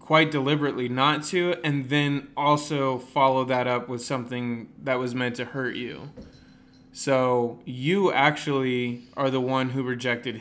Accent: American